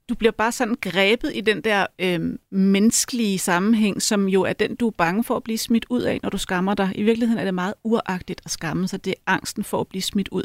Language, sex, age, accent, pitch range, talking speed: Danish, female, 30-49, native, 190-235 Hz, 260 wpm